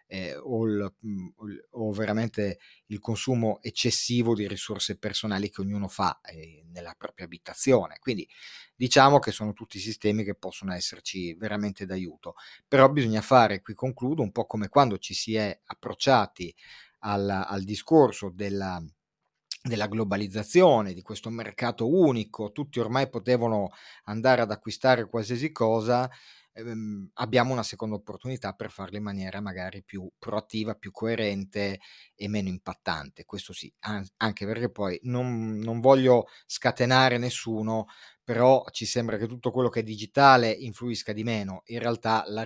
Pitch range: 100-120 Hz